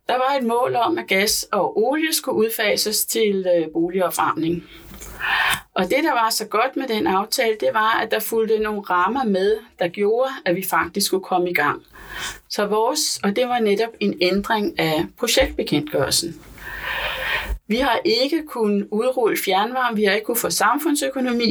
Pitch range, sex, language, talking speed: 190-250 Hz, female, Danish, 170 wpm